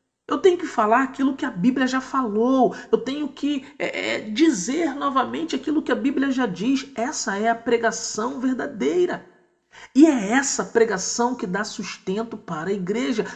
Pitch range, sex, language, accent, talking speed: 135-225 Hz, male, Portuguese, Brazilian, 160 wpm